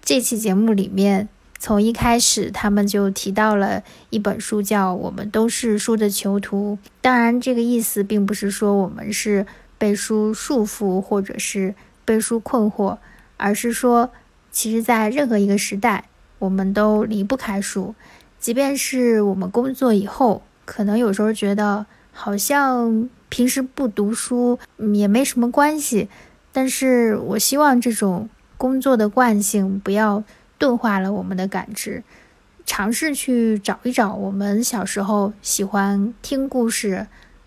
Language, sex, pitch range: Chinese, female, 200-235 Hz